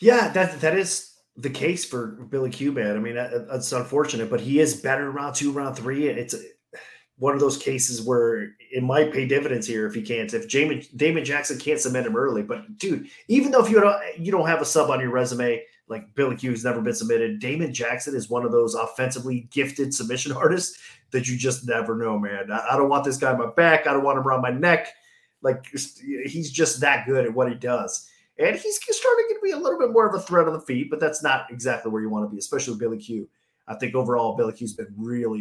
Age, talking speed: 30-49, 240 wpm